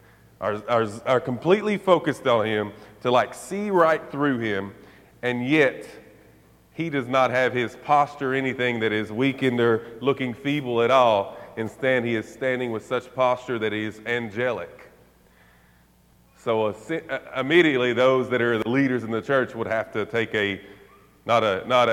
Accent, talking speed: American, 165 wpm